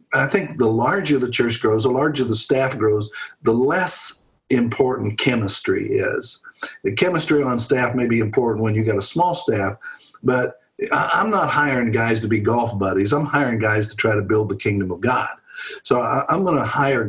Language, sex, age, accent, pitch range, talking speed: English, male, 50-69, American, 110-130 Hz, 195 wpm